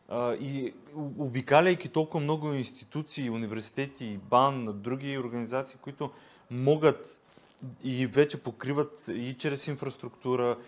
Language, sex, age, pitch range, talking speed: Bulgarian, male, 30-49, 120-145 Hz, 100 wpm